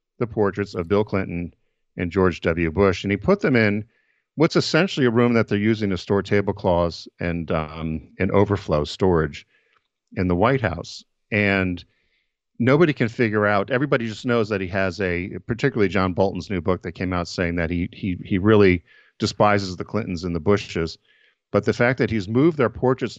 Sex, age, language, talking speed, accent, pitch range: male, 50-69, English, 190 wpm, American, 90-115 Hz